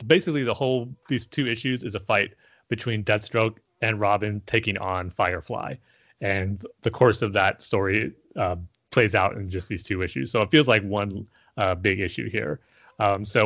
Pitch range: 95-115 Hz